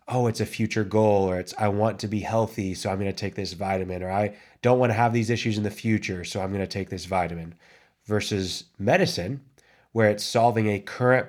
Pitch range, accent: 95-110 Hz, American